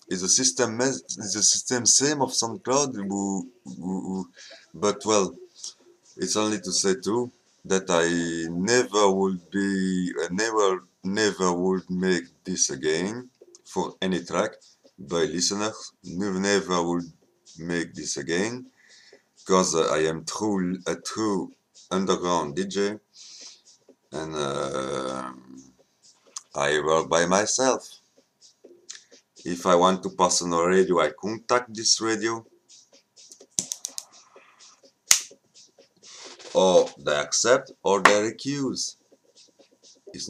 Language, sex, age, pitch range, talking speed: French, male, 50-69, 85-110 Hz, 110 wpm